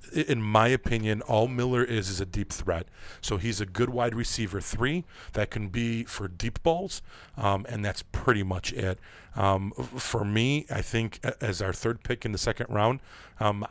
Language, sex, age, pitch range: English, male, 40-59, 100-115 Hz